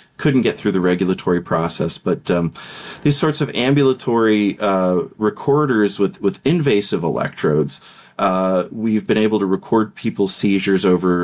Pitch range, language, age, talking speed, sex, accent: 100-125 Hz, English, 40-59, 145 wpm, male, American